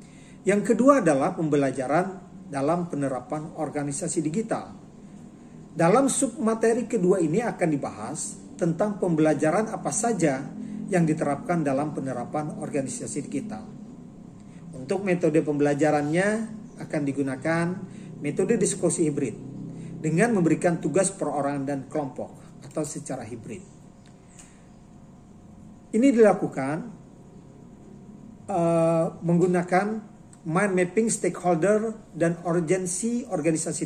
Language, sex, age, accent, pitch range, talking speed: Indonesian, male, 40-59, native, 155-195 Hz, 90 wpm